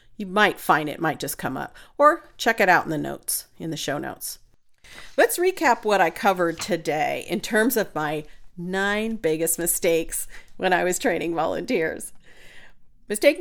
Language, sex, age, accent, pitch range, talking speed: English, female, 40-59, American, 170-220 Hz, 170 wpm